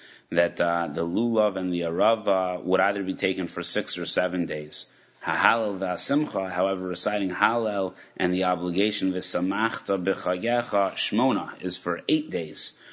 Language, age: English, 30-49